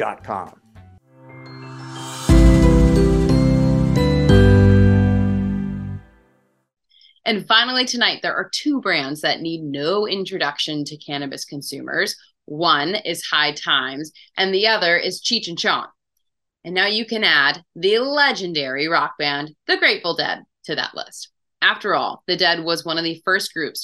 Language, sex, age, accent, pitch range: English, female, 30-49, American, 140-205 Hz